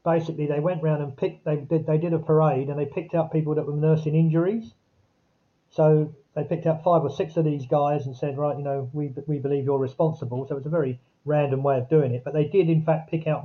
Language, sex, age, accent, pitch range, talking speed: English, male, 40-59, British, 135-160 Hz, 260 wpm